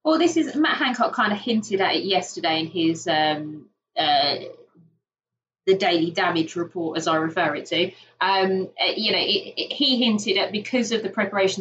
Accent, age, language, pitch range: British, 20-39, English, 165-205 Hz